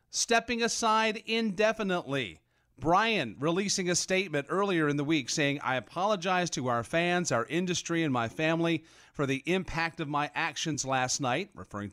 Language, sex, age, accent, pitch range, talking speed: English, male, 40-59, American, 130-180 Hz, 155 wpm